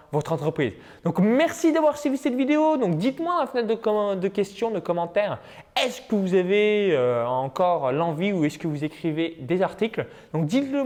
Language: French